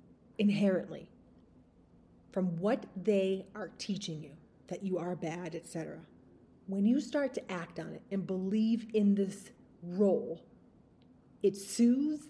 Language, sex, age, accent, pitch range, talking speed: English, female, 30-49, American, 175-215 Hz, 125 wpm